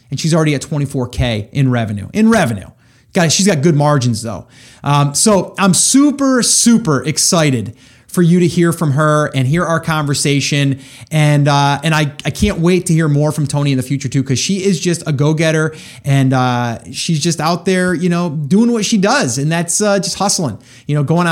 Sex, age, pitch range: male, 30-49, 140-185 Hz